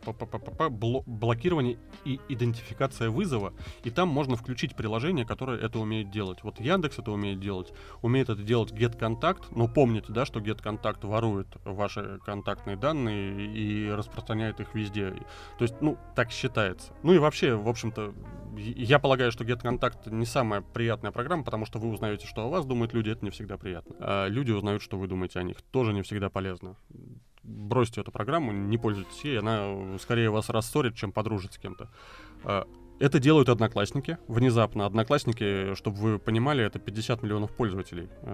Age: 30-49